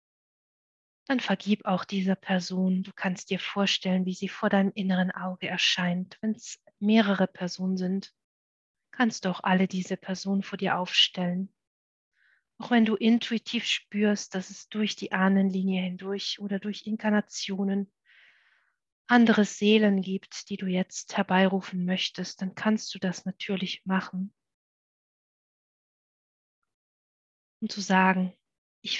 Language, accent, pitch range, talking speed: German, German, 185-205 Hz, 130 wpm